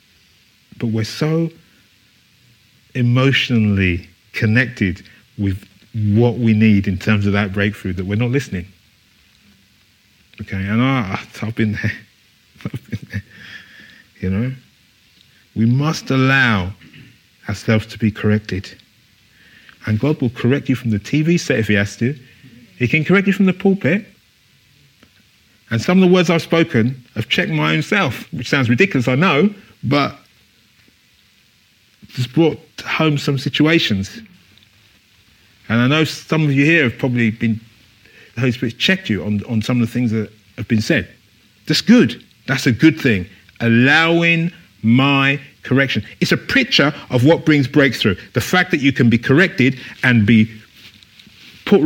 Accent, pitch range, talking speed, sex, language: British, 105-140 Hz, 145 wpm, male, English